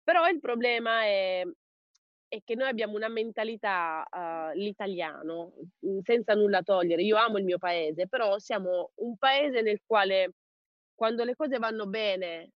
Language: Italian